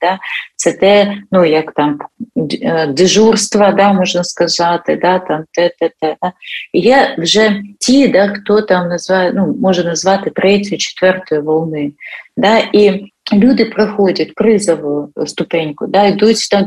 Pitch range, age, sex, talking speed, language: 170-215 Hz, 40-59, female, 130 wpm, Ukrainian